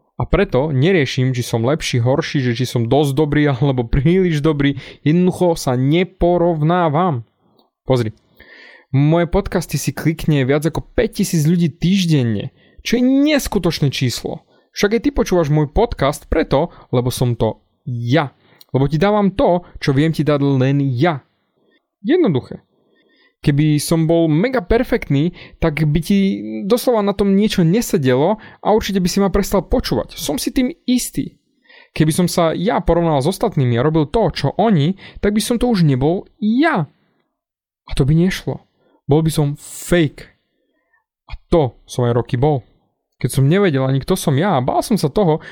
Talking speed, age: 160 wpm, 20-39